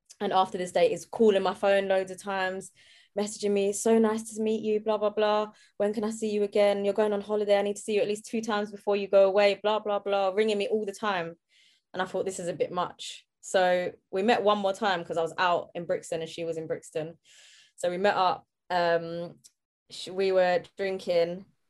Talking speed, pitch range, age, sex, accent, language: 235 wpm, 185-225 Hz, 20-39, female, British, English